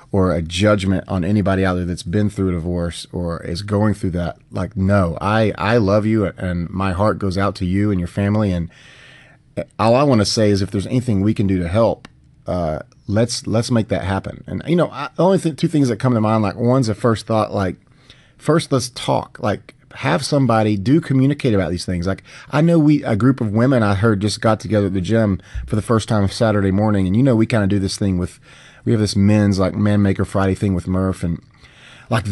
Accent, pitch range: American, 100-125 Hz